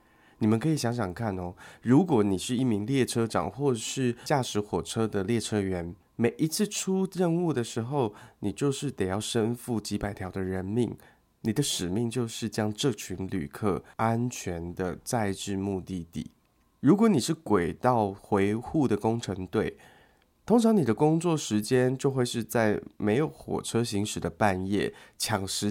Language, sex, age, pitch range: Chinese, male, 20-39, 100-135 Hz